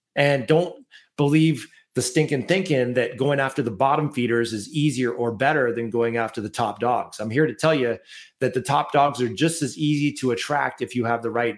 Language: English